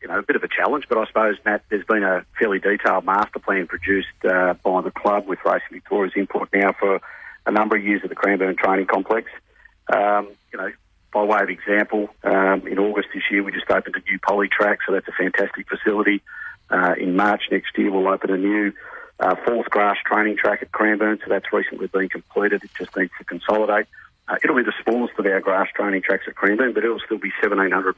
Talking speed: 225 wpm